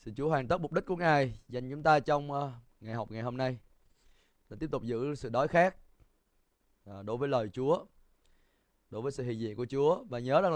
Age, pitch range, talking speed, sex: 20-39, 115-150 Hz, 225 wpm, male